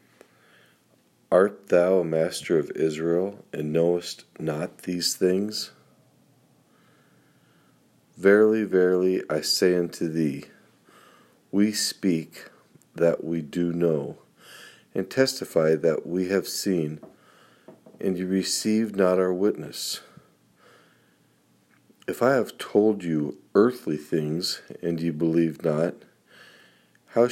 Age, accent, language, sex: 50-69, American, English, male